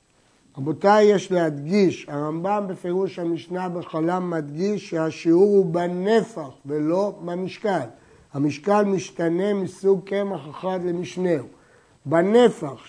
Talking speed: 95 wpm